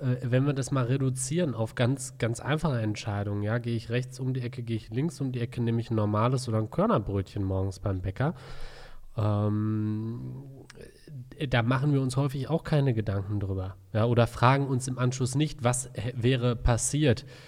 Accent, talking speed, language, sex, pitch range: German, 185 wpm, German, male, 110-130 Hz